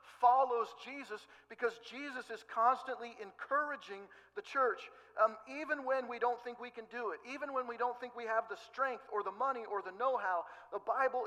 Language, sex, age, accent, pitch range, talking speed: English, male, 50-69, American, 180-260 Hz, 190 wpm